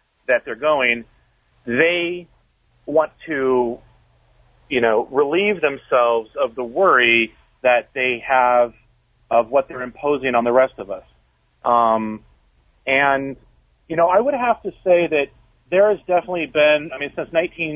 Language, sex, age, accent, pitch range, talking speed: English, male, 40-59, American, 120-155 Hz, 145 wpm